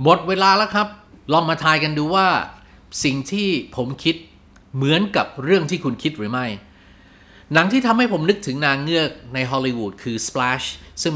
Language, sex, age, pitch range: Thai, male, 30-49, 120-165 Hz